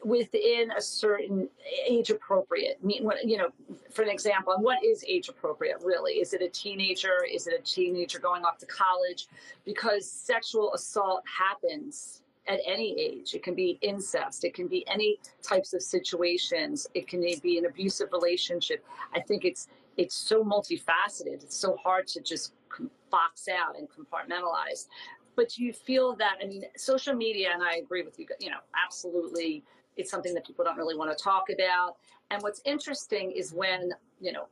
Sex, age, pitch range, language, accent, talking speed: female, 40-59, 180-285 Hz, English, American, 175 wpm